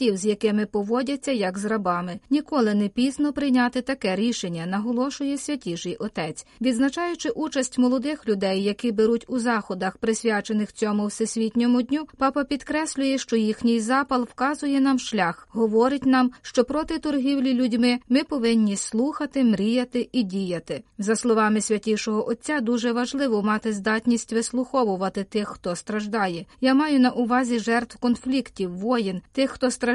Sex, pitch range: female, 215-260 Hz